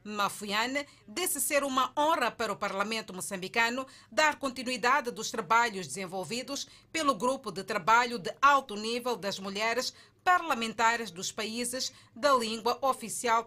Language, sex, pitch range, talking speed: Portuguese, female, 220-270 Hz, 130 wpm